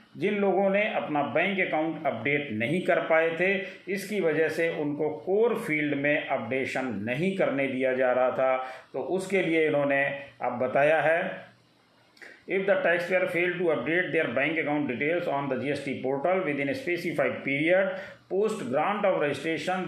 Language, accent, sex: Hindi, native, male